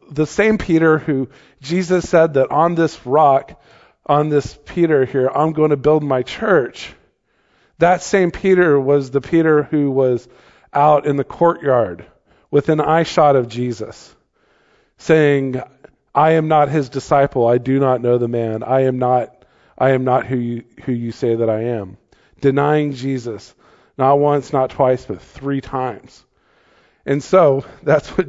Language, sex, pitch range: English, male, 130-165 Hz